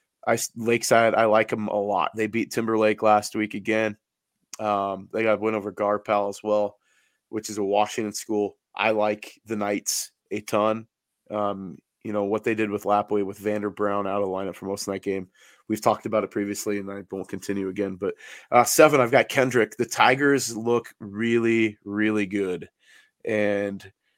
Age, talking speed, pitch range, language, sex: 20-39, 185 wpm, 100-115 Hz, English, male